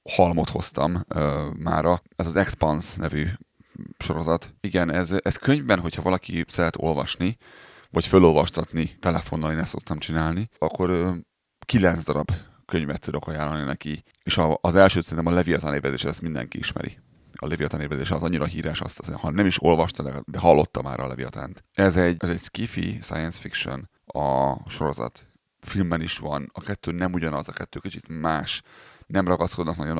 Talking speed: 160 wpm